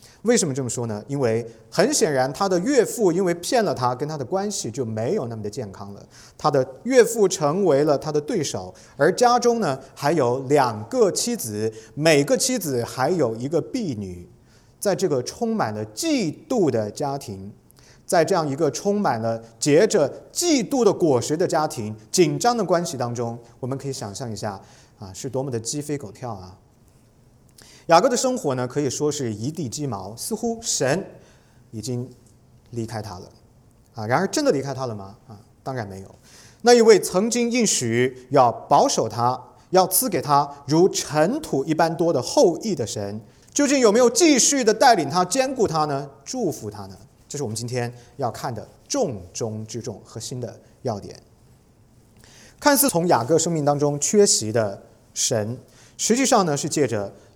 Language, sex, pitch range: English, male, 115-175 Hz